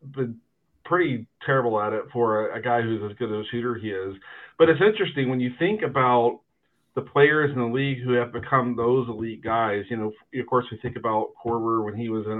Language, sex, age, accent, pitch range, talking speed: English, male, 40-59, American, 115-135 Hz, 225 wpm